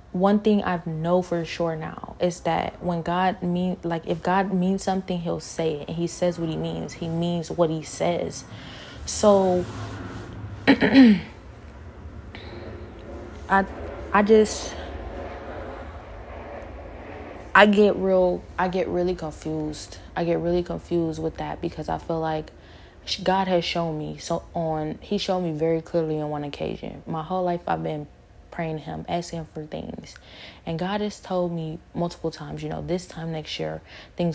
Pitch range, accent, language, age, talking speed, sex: 145-180 Hz, American, English, 20-39, 160 wpm, female